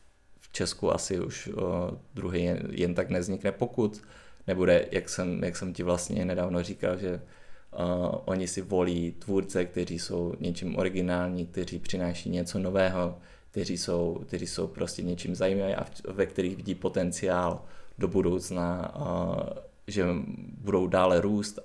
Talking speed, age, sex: 130 wpm, 20-39, male